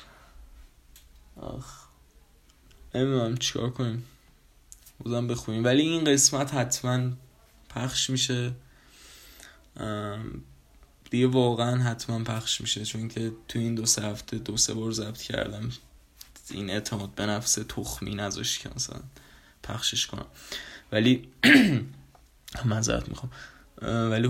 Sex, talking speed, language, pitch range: male, 105 wpm, Persian, 110-125 Hz